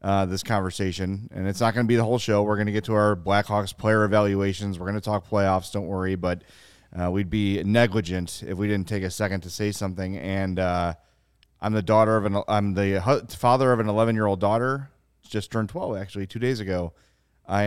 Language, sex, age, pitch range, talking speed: English, male, 30-49, 95-110 Hz, 225 wpm